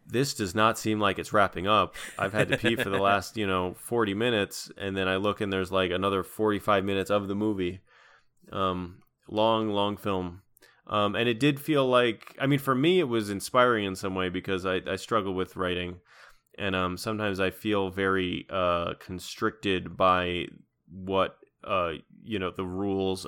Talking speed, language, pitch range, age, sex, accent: 190 wpm, English, 95-120 Hz, 20-39, male, American